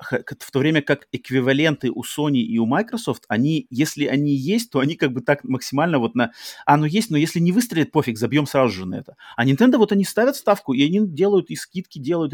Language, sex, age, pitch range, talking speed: Russian, male, 30-49, 125-160 Hz, 225 wpm